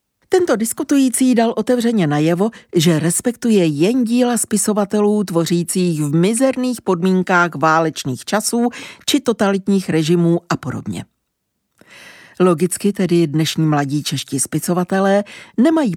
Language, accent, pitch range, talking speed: Czech, native, 155-215 Hz, 105 wpm